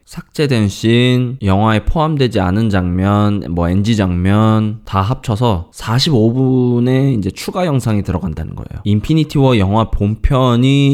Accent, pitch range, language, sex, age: native, 95-130 Hz, Korean, male, 20-39